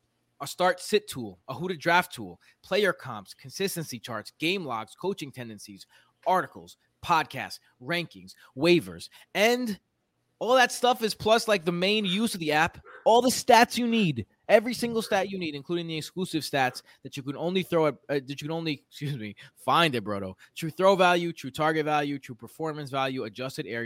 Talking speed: 185 wpm